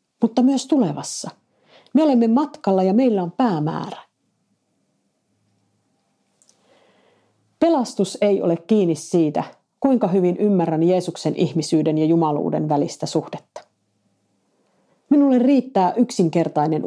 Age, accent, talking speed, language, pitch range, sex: 50-69, native, 95 wpm, Finnish, 160-235 Hz, female